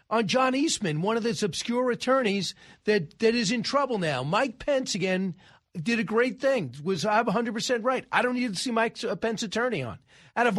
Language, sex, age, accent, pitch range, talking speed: English, male, 40-59, American, 165-225 Hz, 205 wpm